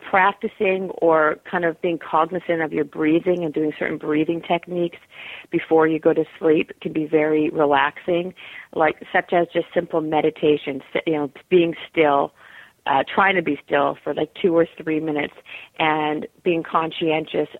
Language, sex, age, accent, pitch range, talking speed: English, female, 40-59, American, 150-170 Hz, 160 wpm